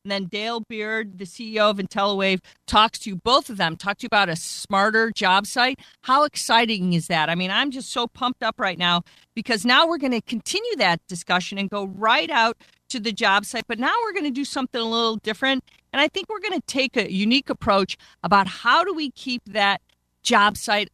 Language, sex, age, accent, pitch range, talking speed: English, female, 40-59, American, 180-250 Hz, 225 wpm